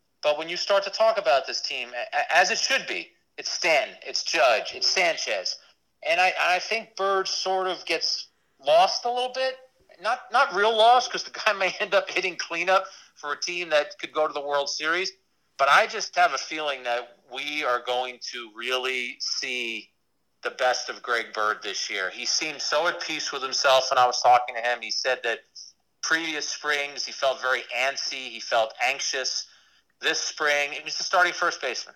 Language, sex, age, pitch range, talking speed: English, male, 40-59, 125-180 Hz, 195 wpm